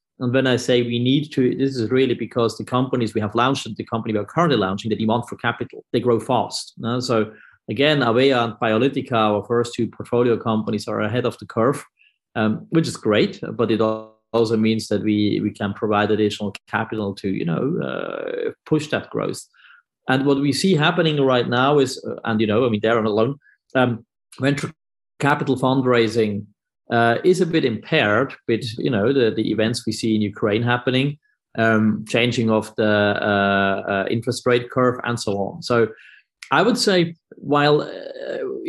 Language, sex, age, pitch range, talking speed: English, male, 30-49, 110-135 Hz, 190 wpm